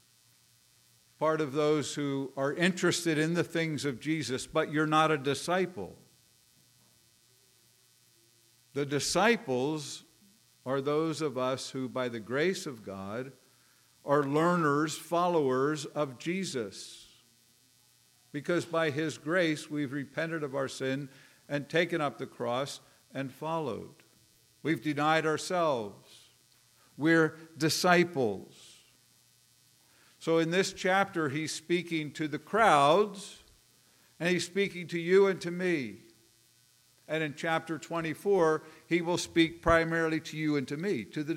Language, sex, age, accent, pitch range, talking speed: English, male, 50-69, American, 135-170 Hz, 125 wpm